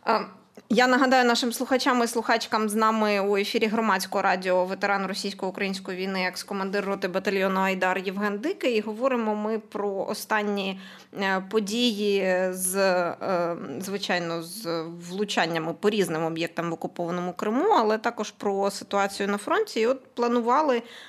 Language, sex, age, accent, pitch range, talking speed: Ukrainian, female, 20-39, native, 195-245 Hz, 130 wpm